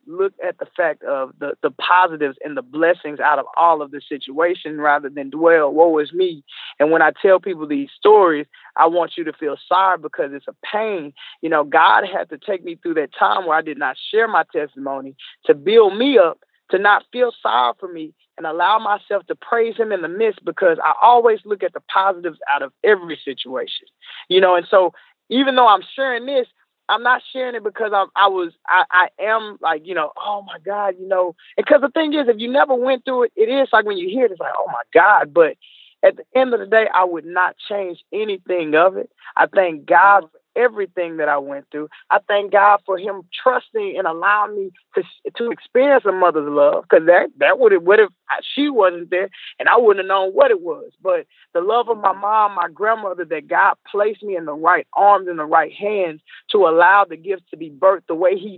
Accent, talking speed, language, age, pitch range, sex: American, 225 wpm, English, 30-49, 175-275 Hz, male